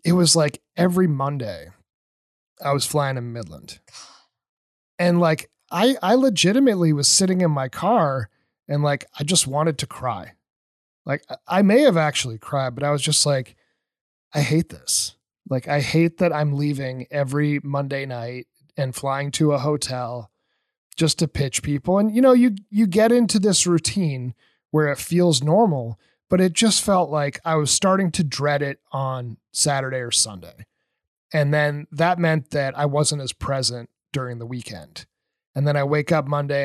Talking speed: 170 wpm